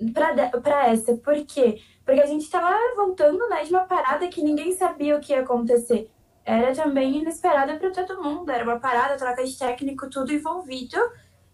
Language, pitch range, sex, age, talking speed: Portuguese, 245-305 Hz, female, 10-29, 175 wpm